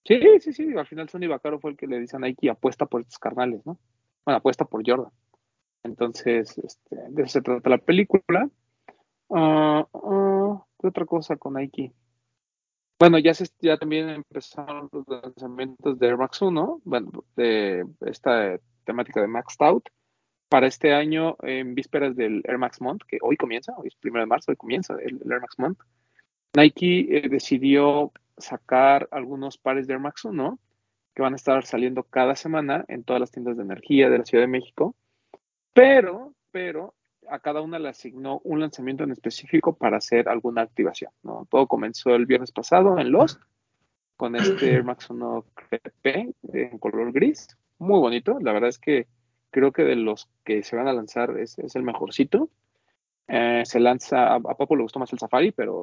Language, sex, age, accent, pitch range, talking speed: Spanish, male, 30-49, Mexican, 120-155 Hz, 185 wpm